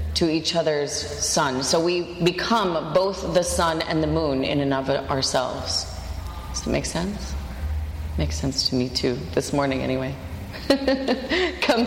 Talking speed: 150 wpm